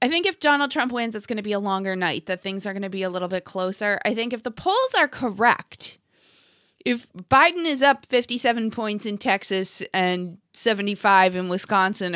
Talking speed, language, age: 205 wpm, English, 20-39